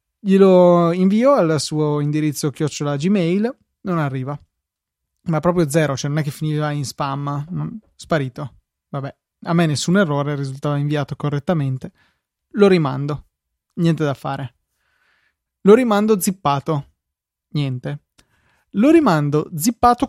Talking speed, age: 120 wpm, 20-39